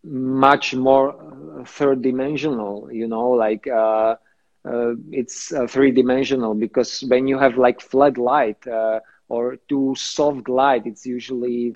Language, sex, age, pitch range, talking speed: English, male, 40-59, 120-140 Hz, 135 wpm